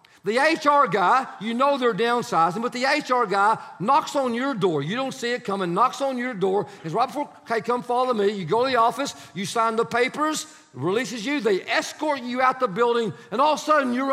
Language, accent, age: English, American, 50-69